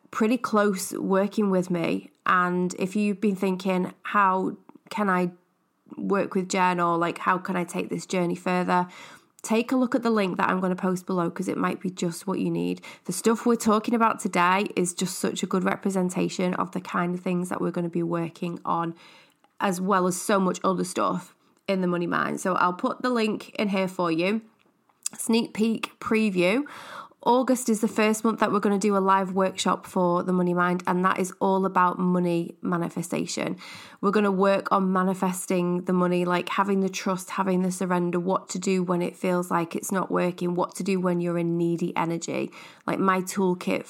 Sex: female